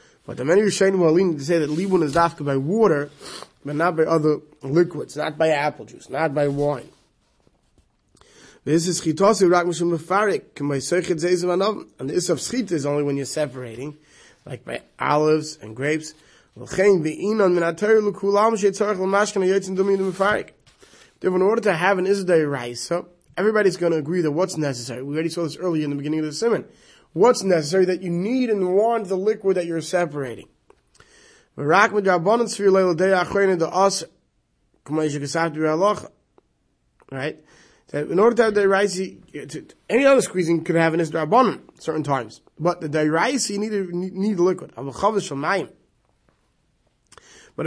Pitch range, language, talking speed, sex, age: 155-200 Hz, English, 125 wpm, male, 20-39